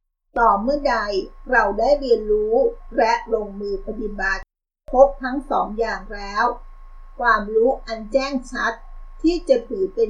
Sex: female